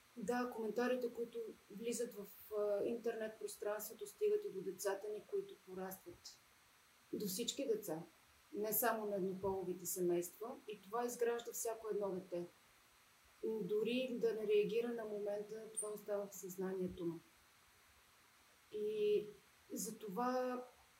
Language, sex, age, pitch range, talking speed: Bulgarian, female, 30-49, 185-230 Hz, 115 wpm